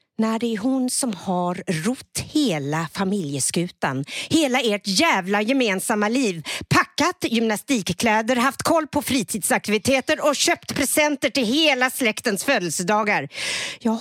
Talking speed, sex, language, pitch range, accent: 120 wpm, female, Swedish, 195-280 Hz, native